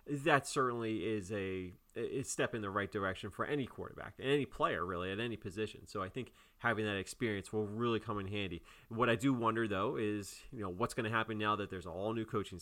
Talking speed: 230 wpm